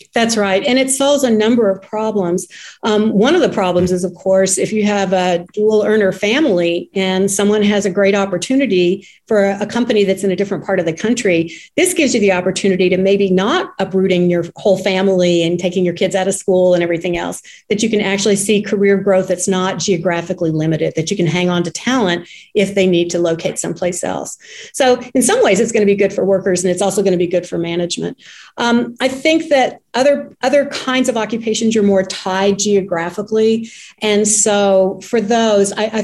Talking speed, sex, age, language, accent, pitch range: 215 wpm, female, 40-59, English, American, 185-220 Hz